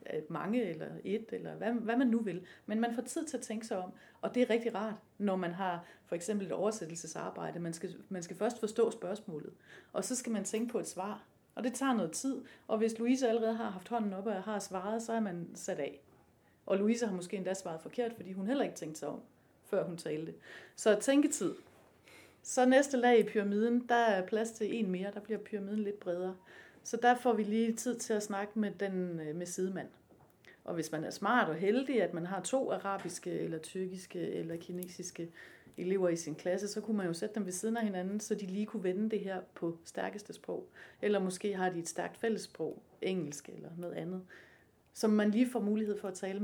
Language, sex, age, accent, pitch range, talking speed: Danish, female, 30-49, native, 185-230 Hz, 220 wpm